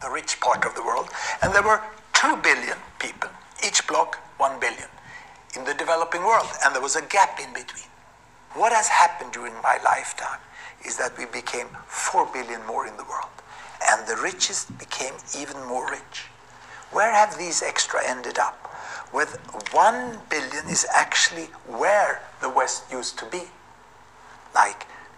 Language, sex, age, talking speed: English, male, 60-79, 160 wpm